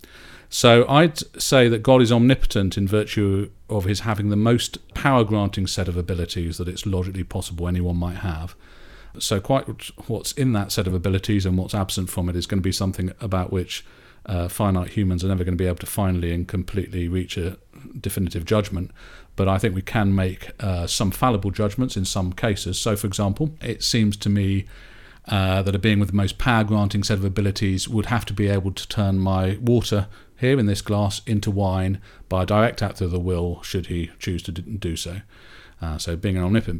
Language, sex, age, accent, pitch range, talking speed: English, male, 40-59, British, 90-110 Hz, 205 wpm